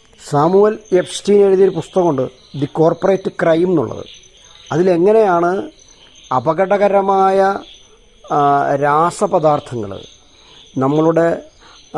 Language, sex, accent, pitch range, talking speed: Malayalam, male, native, 155-190 Hz, 60 wpm